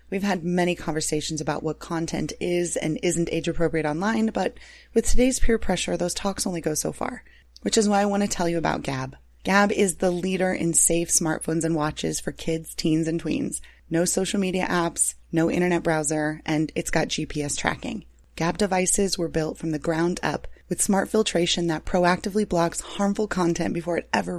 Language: English